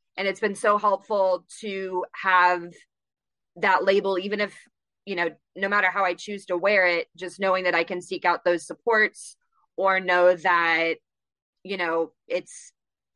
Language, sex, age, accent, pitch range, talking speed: English, female, 20-39, American, 175-205 Hz, 165 wpm